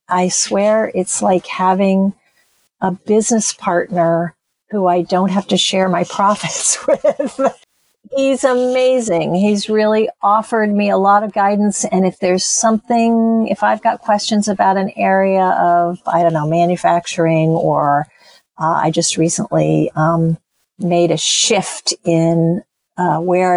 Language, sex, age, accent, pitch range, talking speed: English, female, 50-69, American, 165-205 Hz, 140 wpm